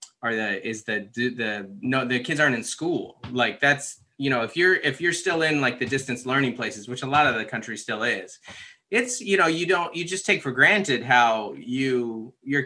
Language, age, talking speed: English, 30-49, 225 wpm